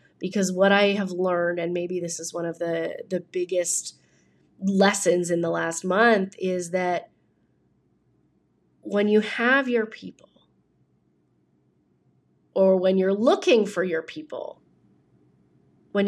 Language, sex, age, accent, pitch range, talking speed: English, female, 30-49, American, 175-220 Hz, 125 wpm